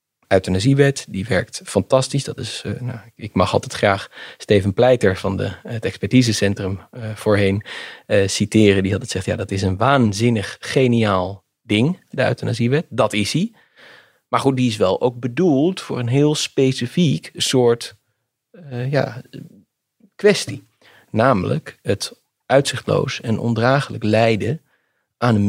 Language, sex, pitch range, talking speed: Dutch, male, 110-135 Hz, 145 wpm